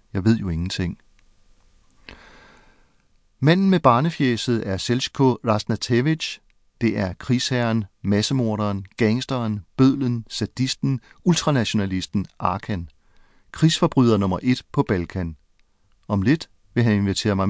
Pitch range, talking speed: 100-130 Hz, 105 wpm